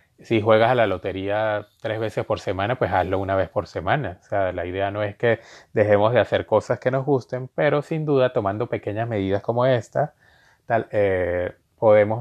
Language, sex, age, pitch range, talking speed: Spanish, male, 20-39, 100-125 Hz, 195 wpm